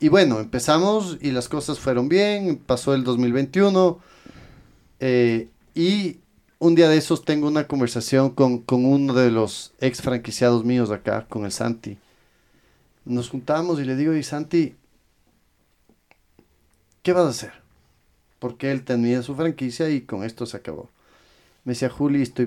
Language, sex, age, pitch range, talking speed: Spanish, male, 40-59, 115-150 Hz, 155 wpm